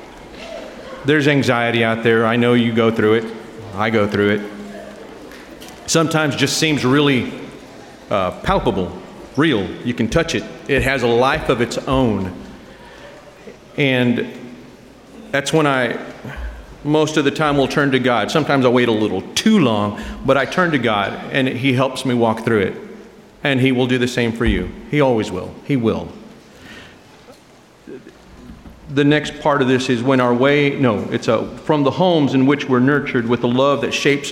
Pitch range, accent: 110-140 Hz, American